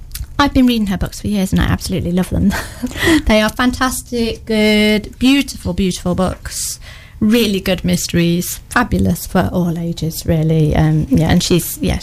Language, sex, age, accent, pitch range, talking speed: English, female, 30-49, British, 175-235 Hz, 160 wpm